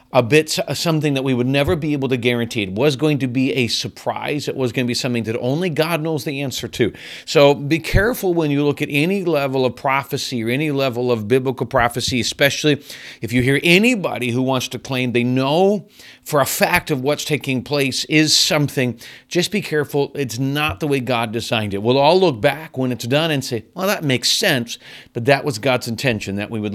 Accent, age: American, 40-59